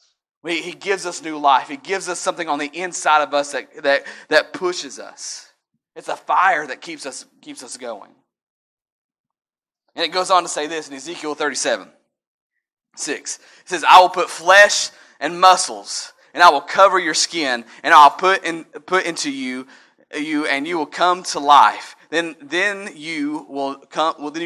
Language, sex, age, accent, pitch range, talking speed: English, male, 30-49, American, 150-195 Hz, 175 wpm